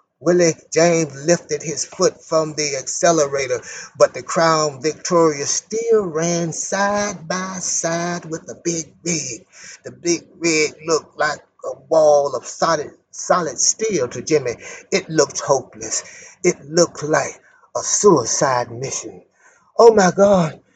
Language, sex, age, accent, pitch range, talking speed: English, male, 30-49, American, 160-220 Hz, 135 wpm